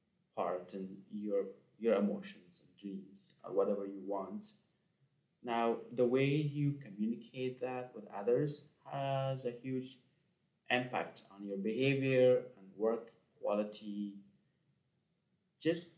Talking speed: 115 wpm